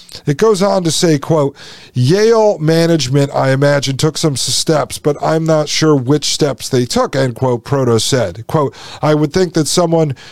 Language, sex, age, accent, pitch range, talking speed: English, male, 40-59, American, 130-155 Hz, 180 wpm